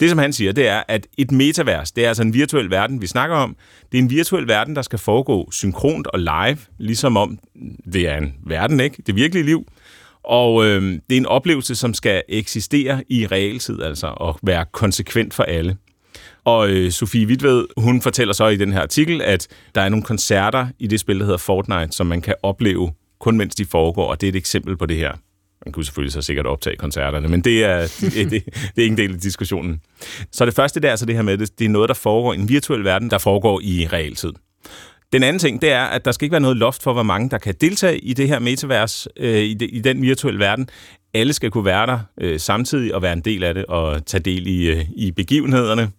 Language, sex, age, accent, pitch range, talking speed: Danish, male, 30-49, native, 95-125 Hz, 235 wpm